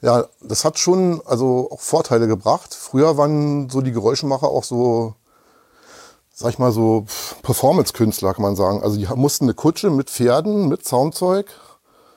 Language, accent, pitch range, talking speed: German, German, 120-155 Hz, 160 wpm